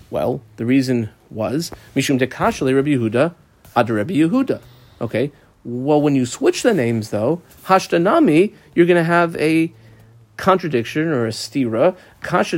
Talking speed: 145 wpm